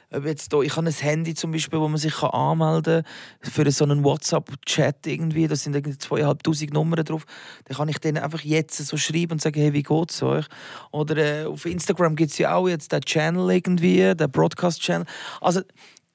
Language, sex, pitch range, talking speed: German, male, 145-180 Hz, 195 wpm